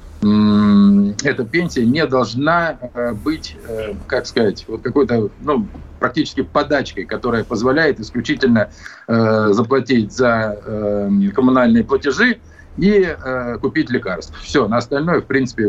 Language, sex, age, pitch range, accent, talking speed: Russian, male, 50-69, 105-170 Hz, native, 115 wpm